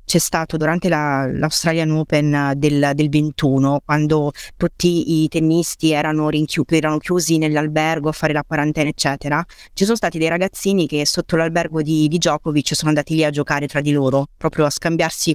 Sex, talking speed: female, 170 wpm